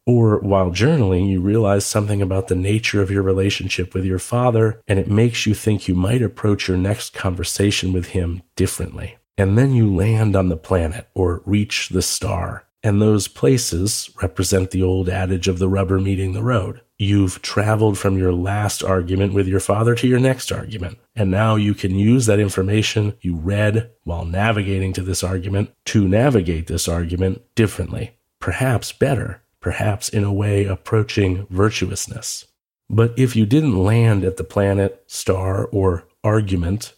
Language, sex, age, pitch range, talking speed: English, male, 40-59, 95-110 Hz, 170 wpm